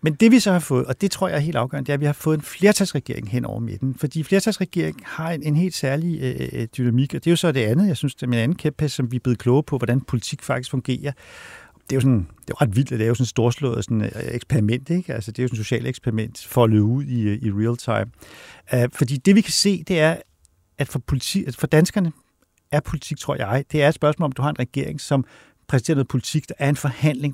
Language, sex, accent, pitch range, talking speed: Danish, male, native, 125-155 Hz, 275 wpm